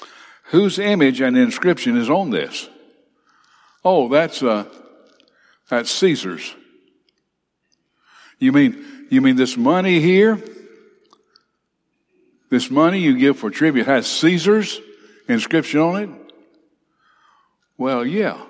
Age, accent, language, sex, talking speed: 60-79, American, English, male, 105 wpm